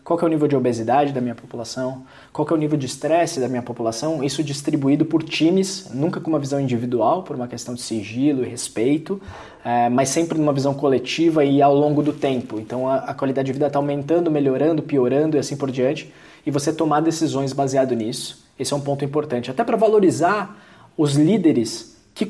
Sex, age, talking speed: male, 20-39, 200 wpm